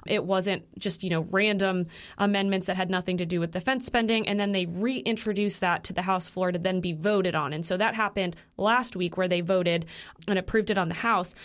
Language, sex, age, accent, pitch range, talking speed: English, female, 20-39, American, 180-215 Hz, 230 wpm